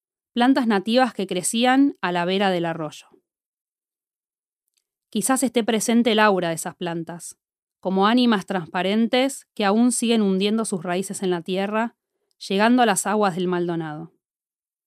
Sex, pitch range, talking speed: female, 185-265 Hz, 140 wpm